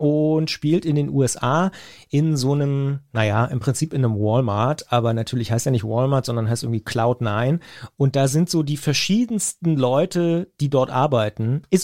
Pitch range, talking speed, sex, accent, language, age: 125-155 Hz, 185 wpm, male, German, German, 30-49